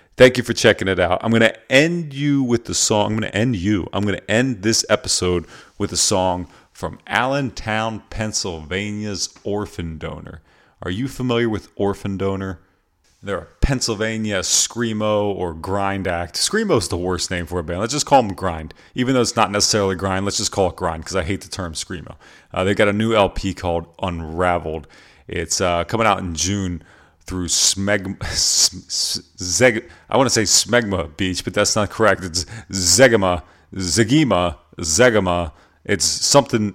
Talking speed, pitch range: 180 wpm, 90-115 Hz